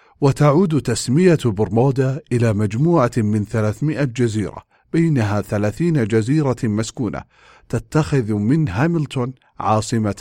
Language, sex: English, male